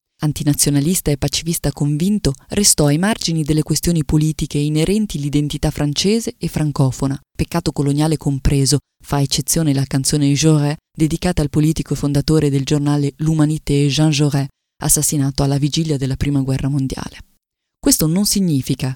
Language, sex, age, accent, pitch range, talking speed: Italian, female, 20-39, native, 145-170 Hz, 140 wpm